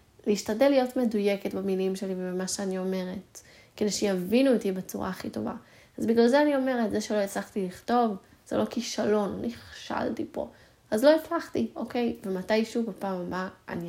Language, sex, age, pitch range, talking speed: Hebrew, female, 20-39, 185-230 Hz, 160 wpm